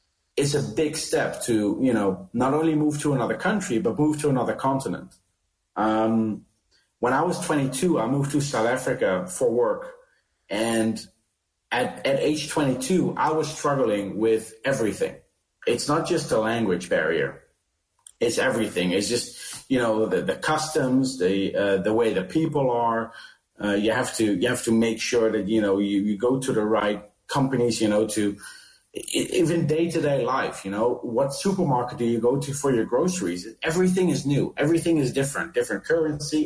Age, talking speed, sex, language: 40-59, 175 wpm, male, English